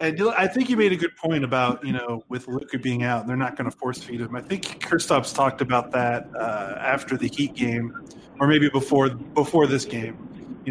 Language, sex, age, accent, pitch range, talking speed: English, male, 20-39, American, 130-150 Hz, 225 wpm